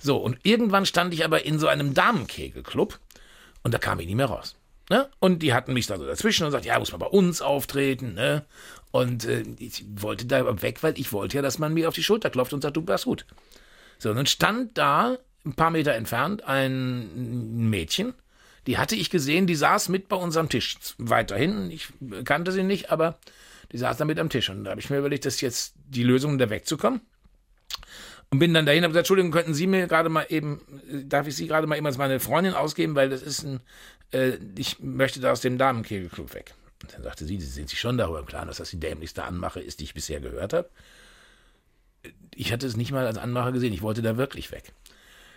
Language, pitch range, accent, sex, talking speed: German, 120-165 Hz, German, male, 225 wpm